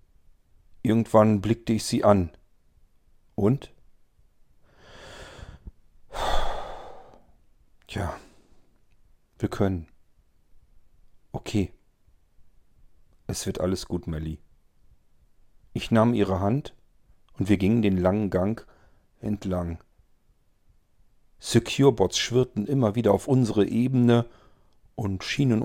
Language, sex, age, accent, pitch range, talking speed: German, male, 40-59, German, 90-110 Hz, 80 wpm